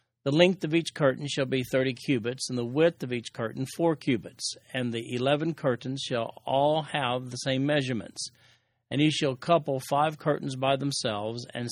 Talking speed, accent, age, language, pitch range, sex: 185 wpm, American, 40-59, English, 120-150 Hz, male